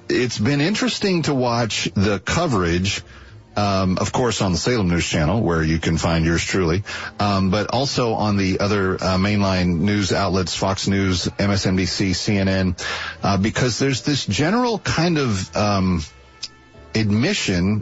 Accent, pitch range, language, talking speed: American, 95-120 Hz, English, 150 wpm